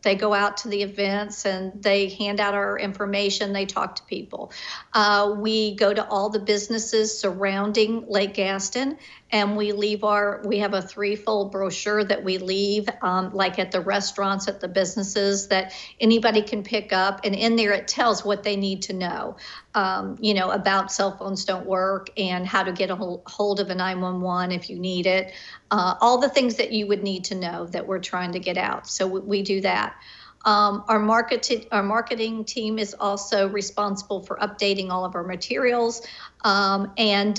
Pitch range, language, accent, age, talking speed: 195-215 Hz, English, American, 50-69, 195 wpm